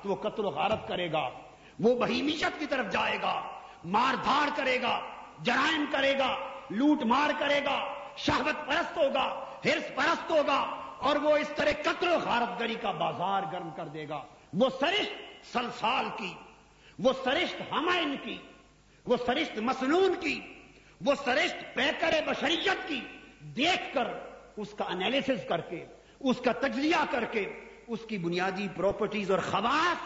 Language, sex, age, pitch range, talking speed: Urdu, male, 50-69, 195-295 Hz, 155 wpm